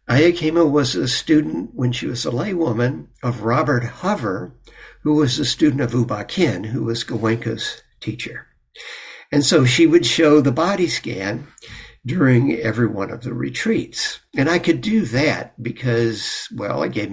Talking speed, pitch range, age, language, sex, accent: 160 wpm, 120-155 Hz, 60-79, English, male, American